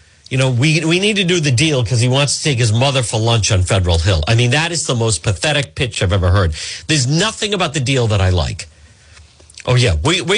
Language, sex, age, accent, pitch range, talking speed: English, male, 50-69, American, 100-160 Hz, 255 wpm